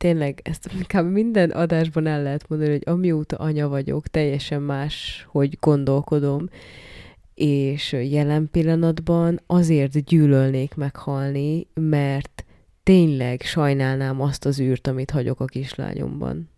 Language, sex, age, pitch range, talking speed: Hungarian, female, 20-39, 125-155 Hz, 110 wpm